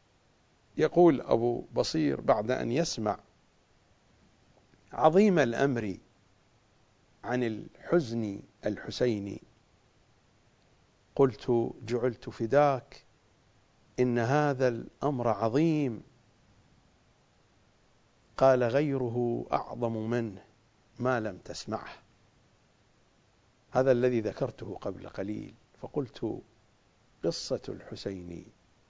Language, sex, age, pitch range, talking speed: English, male, 50-69, 105-130 Hz, 70 wpm